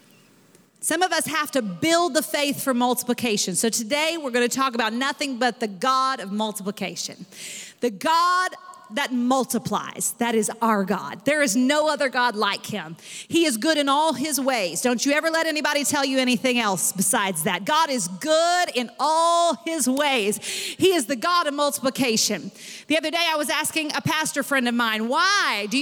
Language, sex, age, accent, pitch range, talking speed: English, female, 40-59, American, 240-355 Hz, 190 wpm